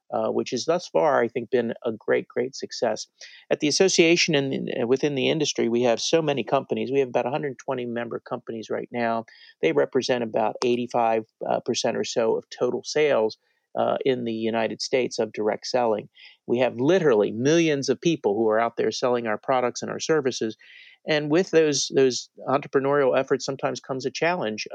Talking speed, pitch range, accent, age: 185 wpm, 120-155 Hz, American, 40-59